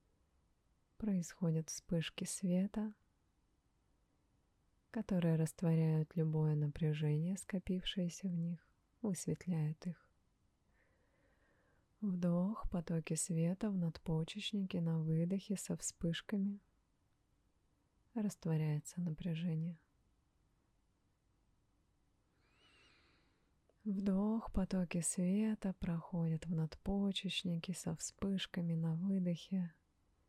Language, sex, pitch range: Russian, female, 155-190 Hz